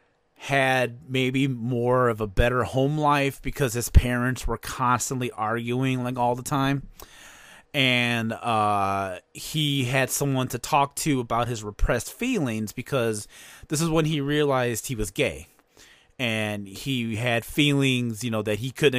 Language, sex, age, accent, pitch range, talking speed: English, male, 30-49, American, 110-135 Hz, 150 wpm